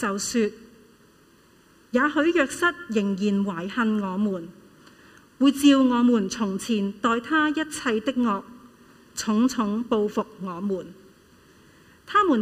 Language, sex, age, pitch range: Chinese, female, 40-59, 200-270 Hz